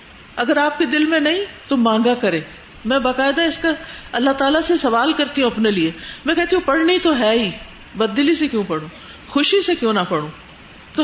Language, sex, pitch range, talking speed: Urdu, female, 230-300 Hz, 210 wpm